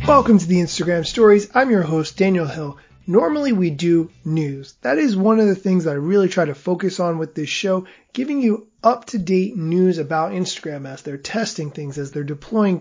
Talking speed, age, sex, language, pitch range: 195 wpm, 30-49, male, English, 155-200 Hz